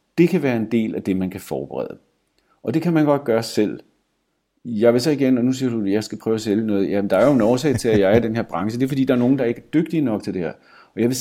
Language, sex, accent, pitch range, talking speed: Danish, male, native, 95-130 Hz, 345 wpm